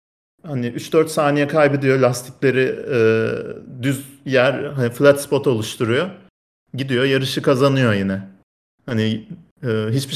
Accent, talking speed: native, 110 wpm